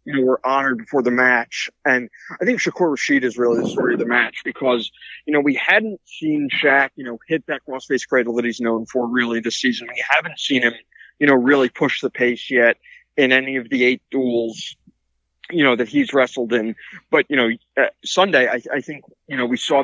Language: English